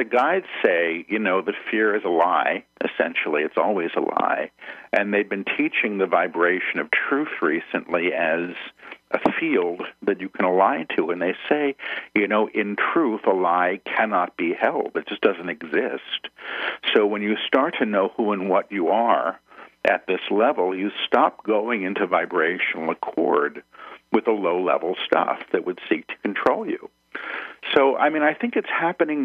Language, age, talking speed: English, 50-69, 175 wpm